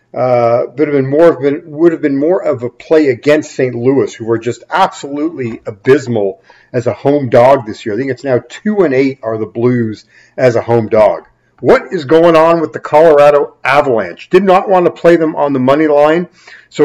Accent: American